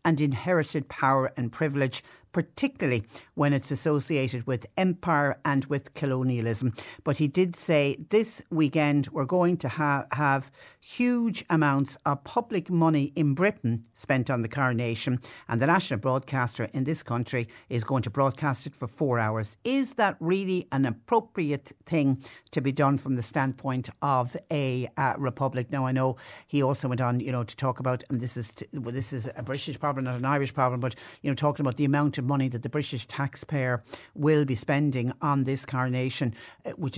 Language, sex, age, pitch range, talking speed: English, female, 60-79, 130-155 Hz, 185 wpm